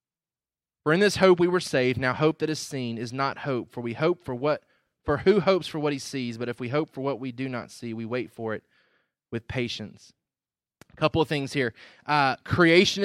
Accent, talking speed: American, 230 wpm